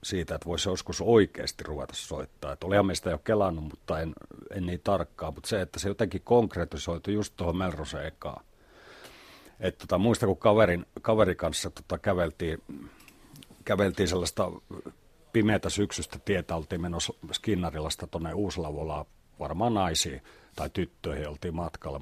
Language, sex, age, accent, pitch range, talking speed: Finnish, male, 50-69, native, 80-100 Hz, 135 wpm